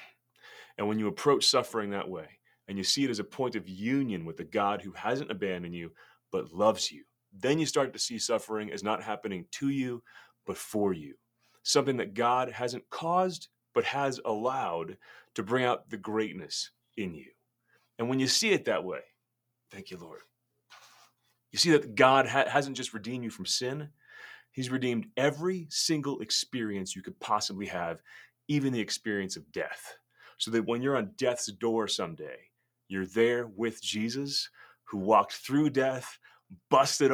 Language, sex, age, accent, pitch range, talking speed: English, male, 30-49, American, 105-135 Hz, 170 wpm